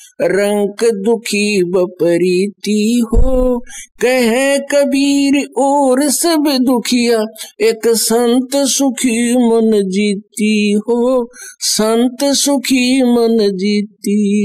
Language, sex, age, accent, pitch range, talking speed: Hindi, male, 50-69, native, 200-255 Hz, 85 wpm